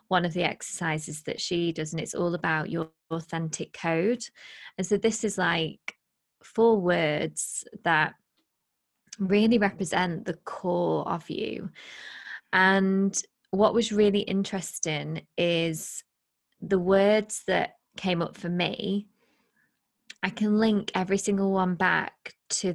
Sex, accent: female, British